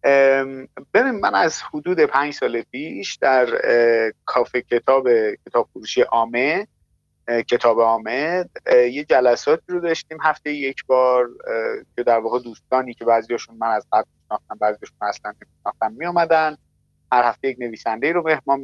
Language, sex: English, male